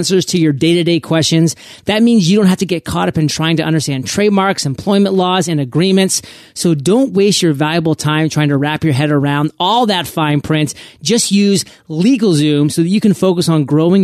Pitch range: 150-195 Hz